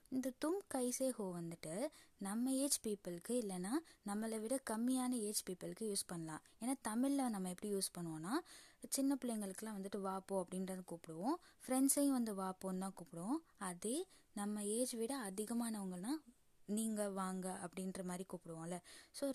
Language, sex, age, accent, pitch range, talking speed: Tamil, female, 20-39, native, 185-255 Hz, 130 wpm